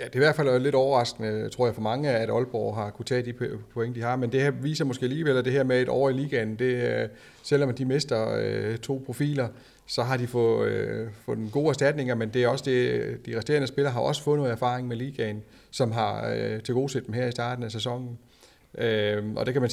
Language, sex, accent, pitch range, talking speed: Danish, male, native, 115-135 Hz, 245 wpm